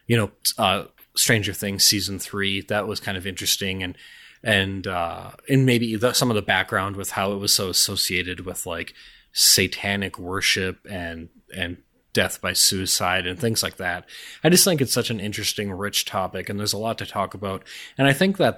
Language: English